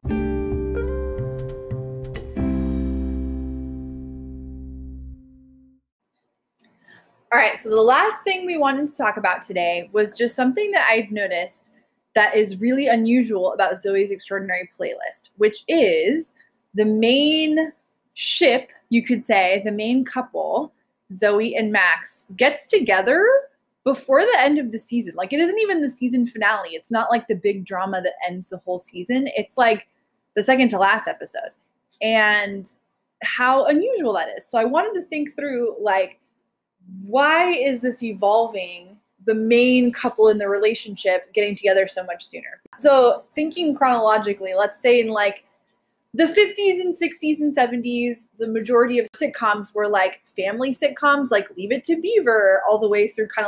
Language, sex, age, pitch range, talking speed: English, female, 20-39, 195-265 Hz, 145 wpm